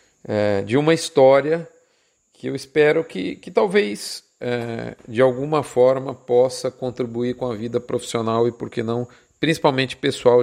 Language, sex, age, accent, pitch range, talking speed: Portuguese, male, 40-59, Brazilian, 120-150 Hz, 140 wpm